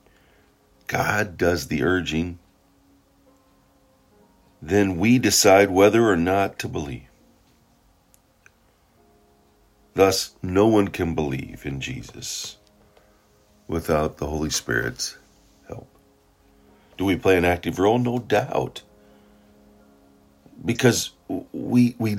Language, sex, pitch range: English, male, 70-105 Hz